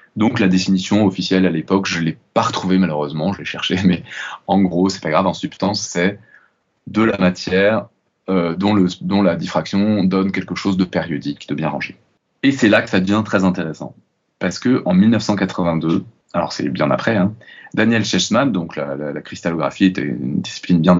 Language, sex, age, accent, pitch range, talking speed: French, male, 20-39, French, 90-110 Hz, 195 wpm